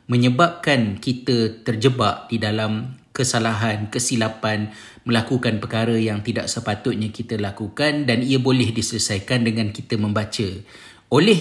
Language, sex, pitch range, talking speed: Malay, male, 110-130 Hz, 115 wpm